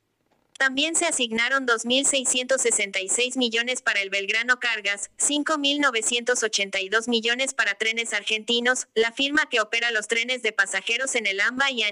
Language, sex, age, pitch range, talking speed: Spanish, female, 20-39, 210-255 Hz, 135 wpm